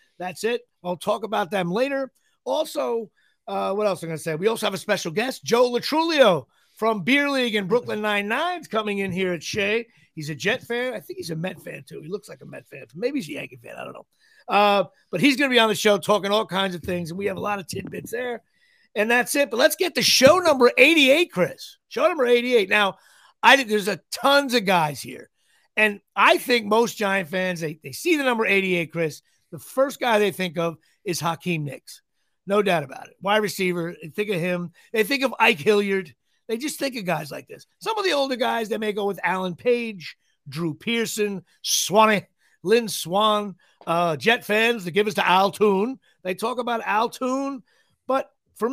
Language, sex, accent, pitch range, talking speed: English, male, American, 185-245 Hz, 220 wpm